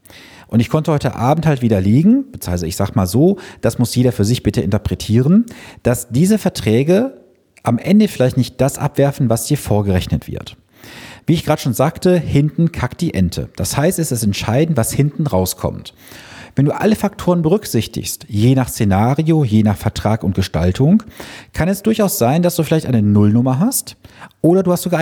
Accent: German